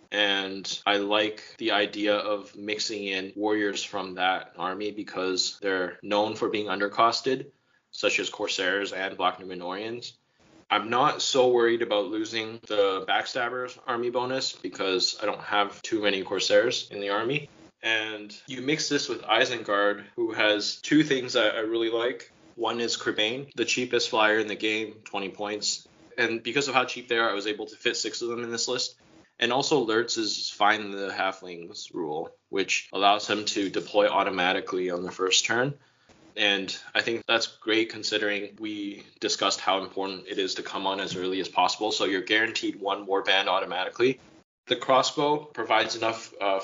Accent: American